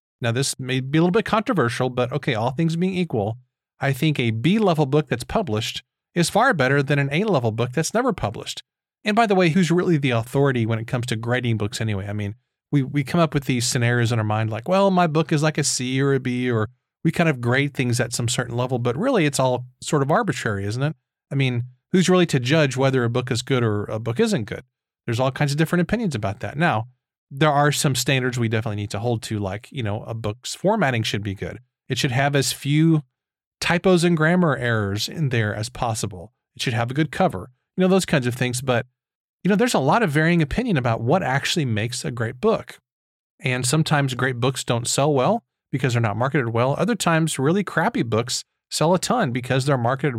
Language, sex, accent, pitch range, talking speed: English, male, American, 120-160 Hz, 235 wpm